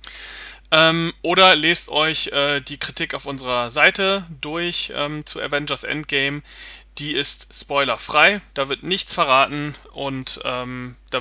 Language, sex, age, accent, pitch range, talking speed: German, male, 30-49, German, 135-175 Hz, 130 wpm